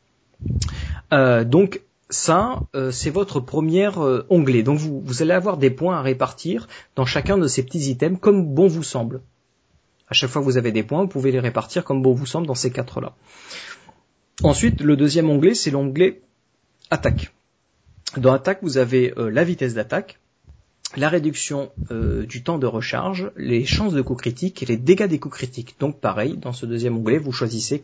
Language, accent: French, French